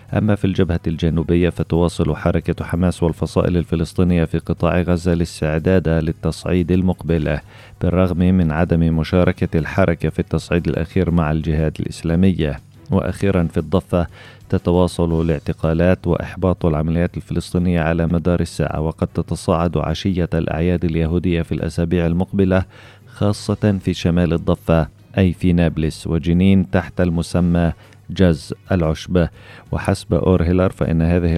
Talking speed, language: 115 wpm, Arabic